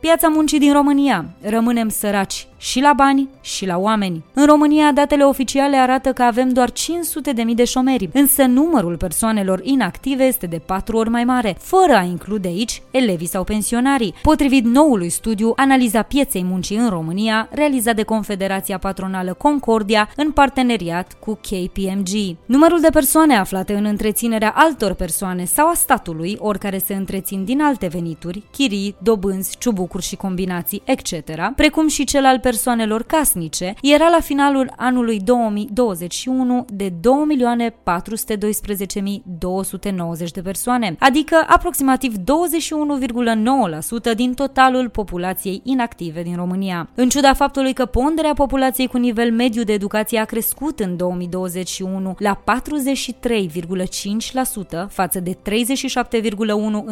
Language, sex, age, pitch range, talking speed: Romanian, female, 20-39, 195-270 Hz, 135 wpm